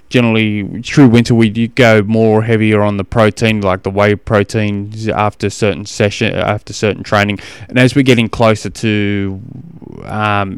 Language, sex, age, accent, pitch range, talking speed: English, male, 20-39, Australian, 100-125 Hz, 160 wpm